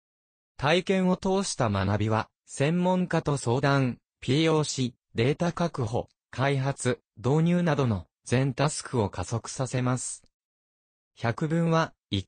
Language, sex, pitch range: Japanese, male, 105-160 Hz